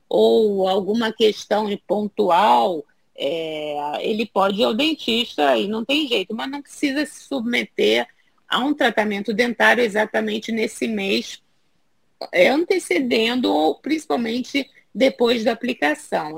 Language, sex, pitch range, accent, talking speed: Portuguese, female, 200-265 Hz, Brazilian, 115 wpm